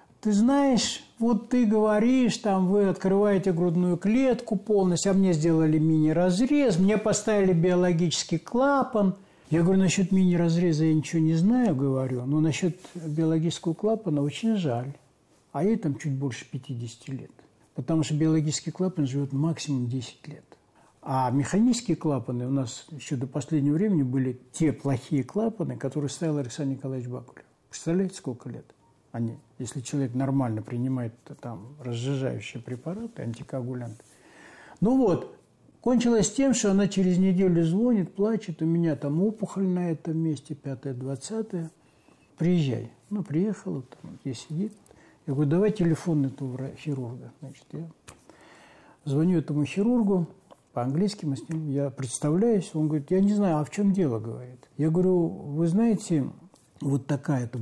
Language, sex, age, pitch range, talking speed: Russian, male, 60-79, 140-195 Hz, 145 wpm